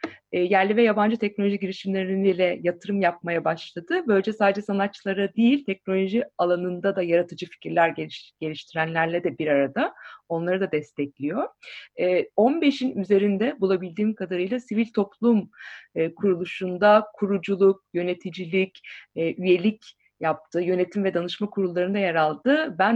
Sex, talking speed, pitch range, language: female, 125 wpm, 175-230 Hz, Turkish